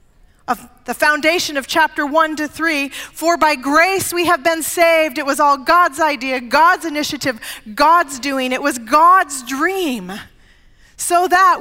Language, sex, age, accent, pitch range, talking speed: English, female, 40-59, American, 245-320 Hz, 155 wpm